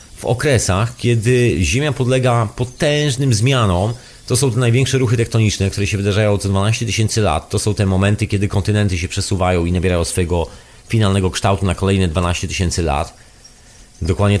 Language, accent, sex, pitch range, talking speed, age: Polish, native, male, 95-125 Hz, 165 wpm, 40-59